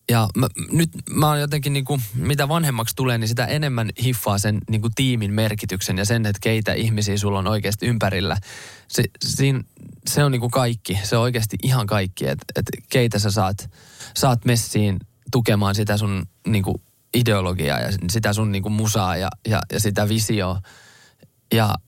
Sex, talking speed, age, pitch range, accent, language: male, 180 wpm, 20-39, 100-120 Hz, native, Finnish